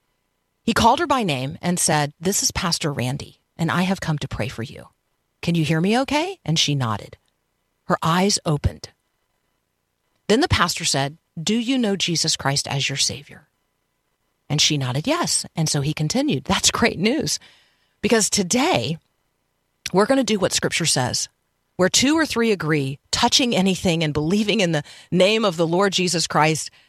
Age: 40-59